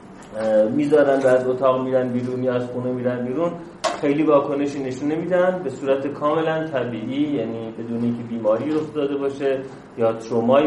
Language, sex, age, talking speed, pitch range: Persian, male, 30-49, 150 wpm, 115-145 Hz